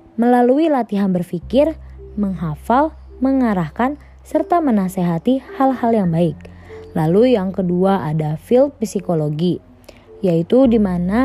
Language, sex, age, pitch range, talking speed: Indonesian, female, 20-39, 170-245 Hz, 100 wpm